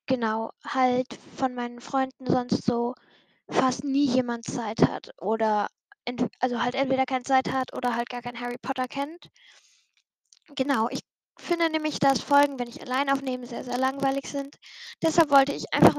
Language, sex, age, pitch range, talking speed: German, female, 10-29, 250-290 Hz, 170 wpm